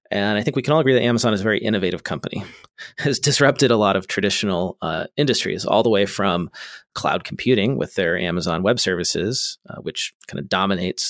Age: 30-49